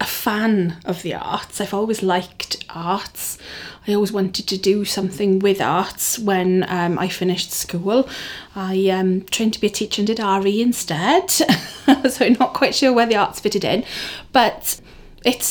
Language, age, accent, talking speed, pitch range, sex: English, 30-49, British, 175 wpm, 190-225 Hz, female